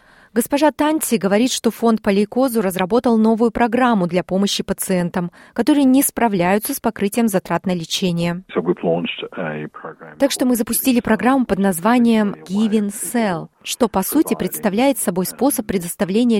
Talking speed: 135 wpm